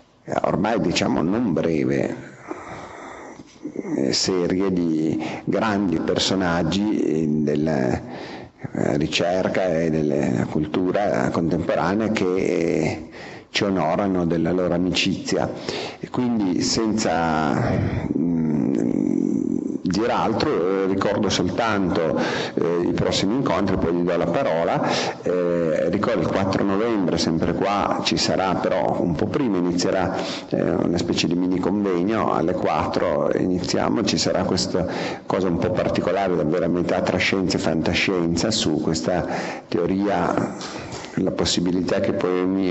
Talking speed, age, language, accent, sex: 110 wpm, 50-69, Italian, native, male